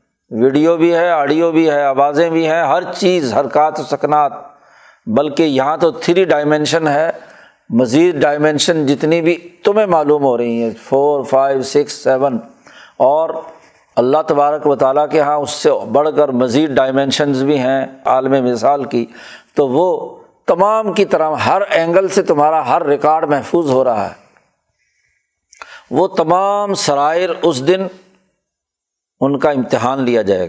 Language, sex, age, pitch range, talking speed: Urdu, male, 60-79, 140-175 Hz, 150 wpm